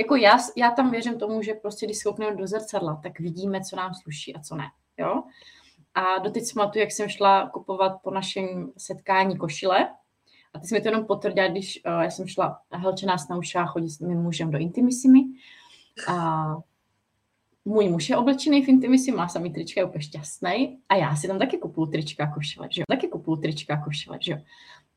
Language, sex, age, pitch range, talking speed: Czech, female, 20-39, 170-225 Hz, 195 wpm